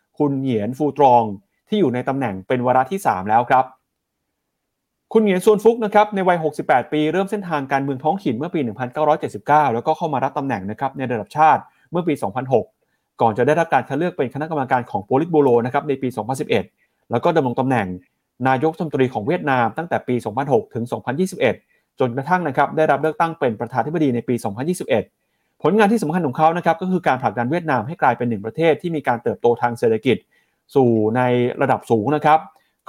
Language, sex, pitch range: Thai, male, 115-155 Hz